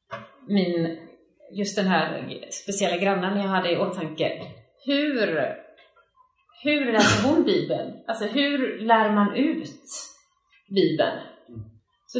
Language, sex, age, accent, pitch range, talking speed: Swedish, female, 30-49, native, 175-255 Hz, 105 wpm